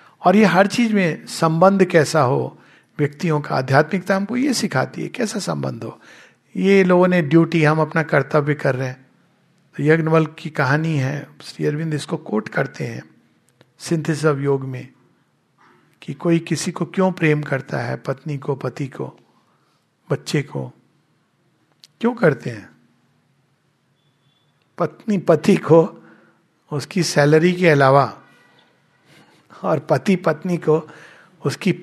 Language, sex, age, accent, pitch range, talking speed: Hindi, male, 50-69, native, 140-175 Hz, 135 wpm